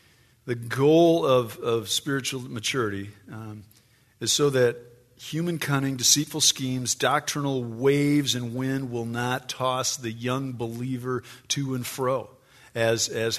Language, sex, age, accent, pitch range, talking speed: English, male, 50-69, American, 115-140 Hz, 130 wpm